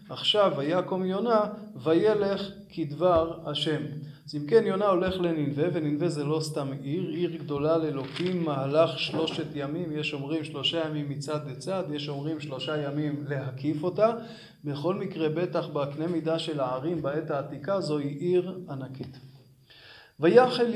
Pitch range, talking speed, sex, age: 150-190 Hz, 140 wpm, male, 20-39